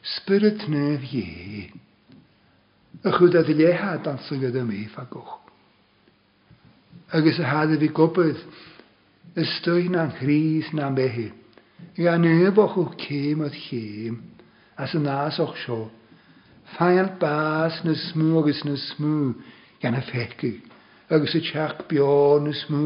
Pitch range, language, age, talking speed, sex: 125-160 Hz, English, 60-79, 135 wpm, male